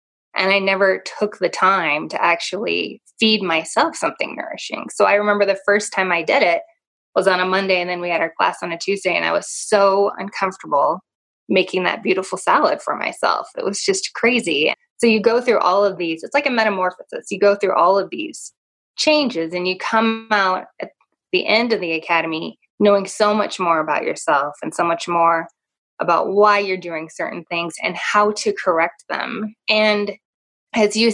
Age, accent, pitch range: 20-39, American, 180-230 Hz